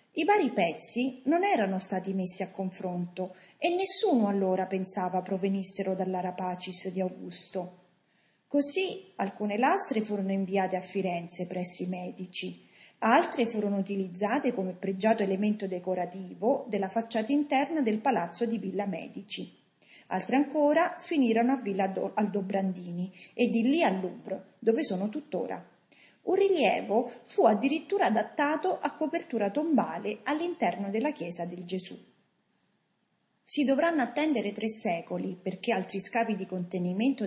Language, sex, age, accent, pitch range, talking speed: Italian, female, 40-59, native, 185-245 Hz, 125 wpm